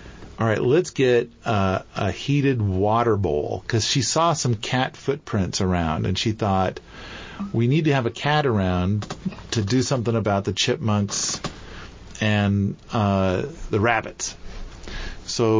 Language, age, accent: English, 50-69, American